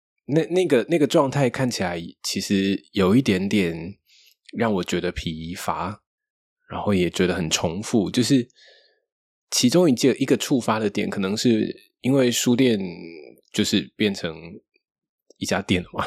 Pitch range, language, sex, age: 95-135 Hz, Chinese, male, 20-39